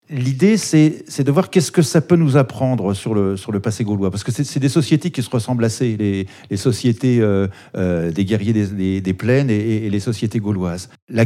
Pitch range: 105-140 Hz